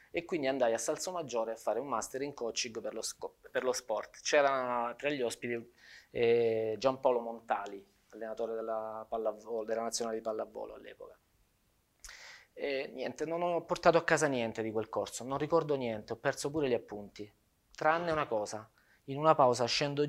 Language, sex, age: Italian, male, 20-39